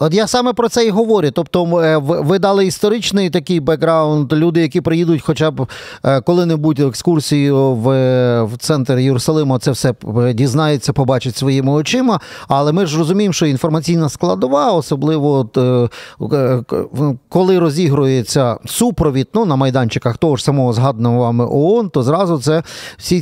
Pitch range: 130-165 Hz